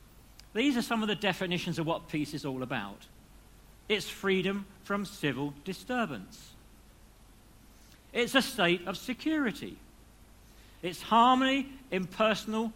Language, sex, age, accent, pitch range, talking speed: English, male, 50-69, British, 155-225 Hz, 120 wpm